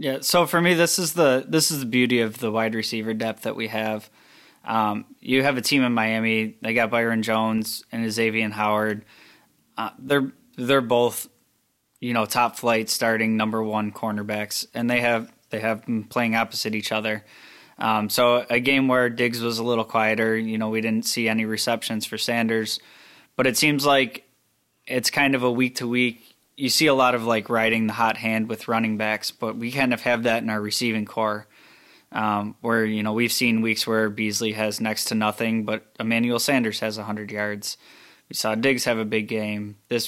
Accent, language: American, English